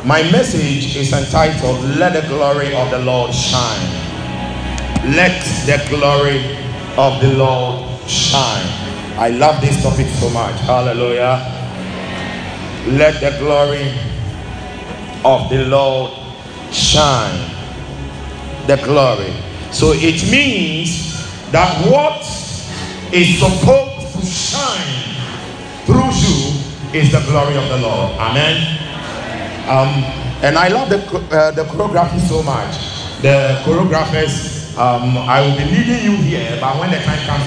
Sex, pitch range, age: male, 120-150 Hz, 50-69